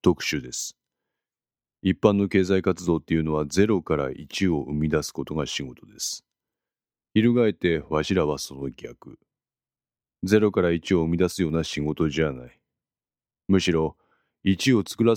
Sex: male